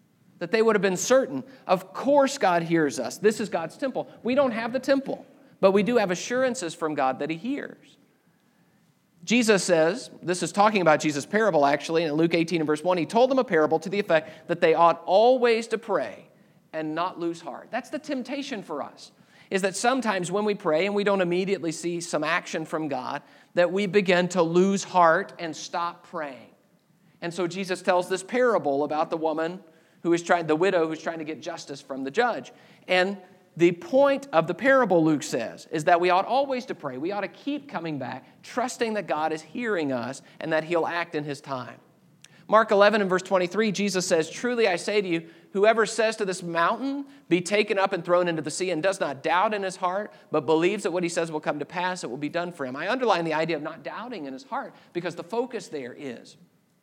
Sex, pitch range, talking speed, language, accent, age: male, 160-210 Hz, 225 wpm, English, American, 50-69